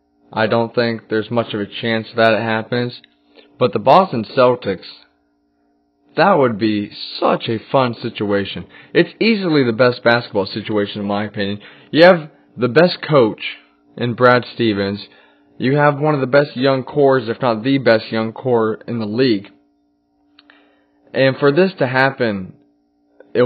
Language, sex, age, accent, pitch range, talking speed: English, male, 20-39, American, 110-145 Hz, 160 wpm